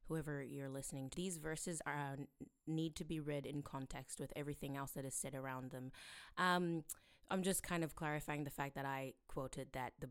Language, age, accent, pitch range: English, 20-39, American, 140-180 Hz